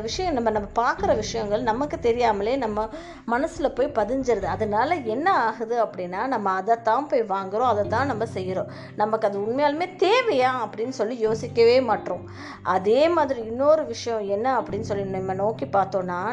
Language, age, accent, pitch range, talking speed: Tamil, 20-39, native, 215-290 Hz, 50 wpm